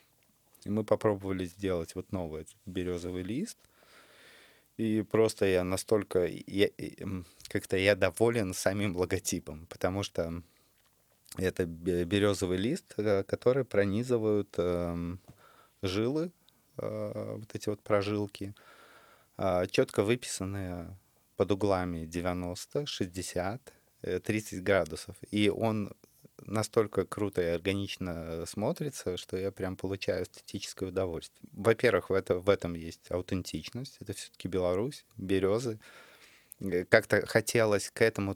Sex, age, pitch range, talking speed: male, 20-39, 90-105 Hz, 100 wpm